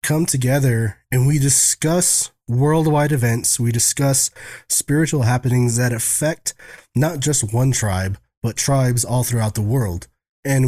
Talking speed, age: 135 wpm, 20-39